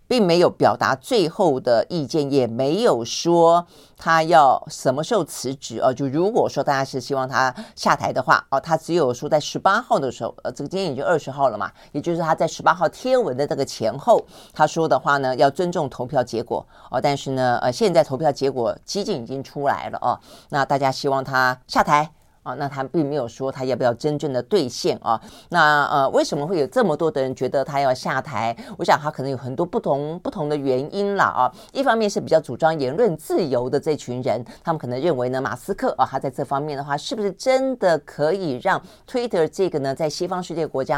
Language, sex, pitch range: Chinese, female, 130-175 Hz